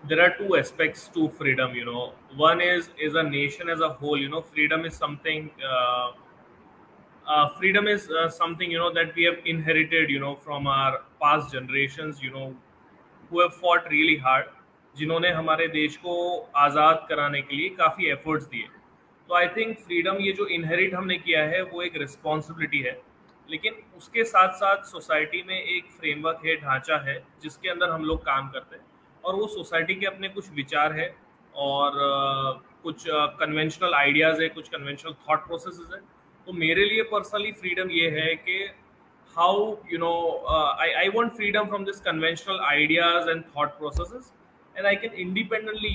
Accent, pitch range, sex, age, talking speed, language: native, 150-180 Hz, male, 20-39, 180 wpm, Hindi